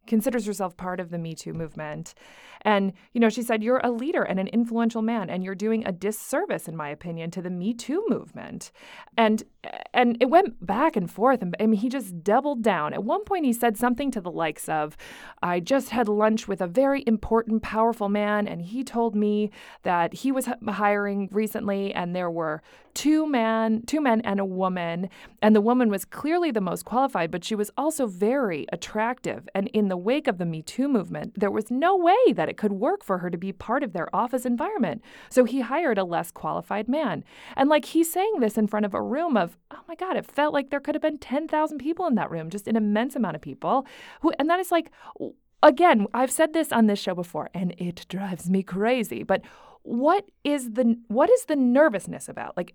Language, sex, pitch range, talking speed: English, female, 190-265 Hz, 220 wpm